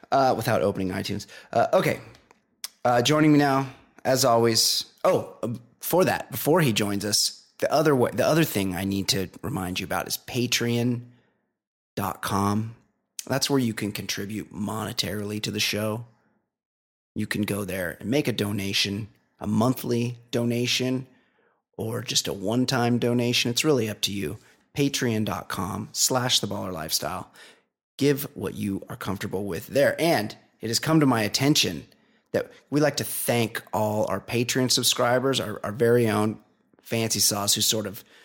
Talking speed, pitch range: 160 wpm, 100-125 Hz